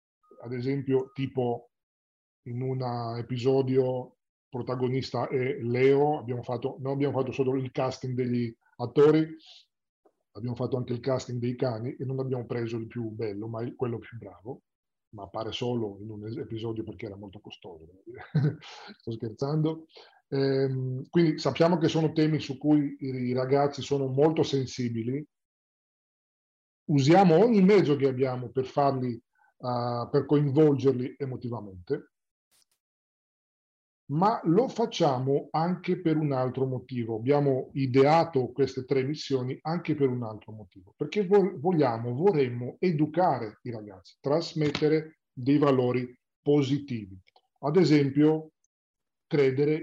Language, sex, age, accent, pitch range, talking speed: Italian, male, 40-59, native, 120-150 Hz, 125 wpm